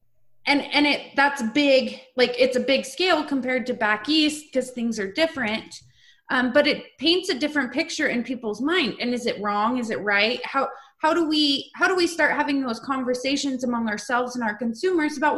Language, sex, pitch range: English, female, 225-290 Hz